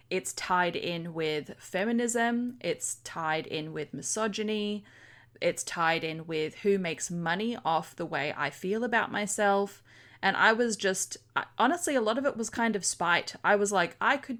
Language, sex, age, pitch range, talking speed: English, female, 20-39, 155-205 Hz, 175 wpm